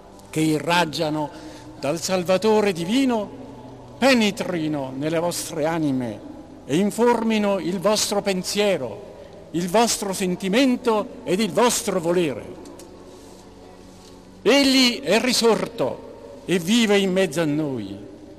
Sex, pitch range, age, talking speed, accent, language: male, 155-220 Hz, 50-69, 100 wpm, native, Italian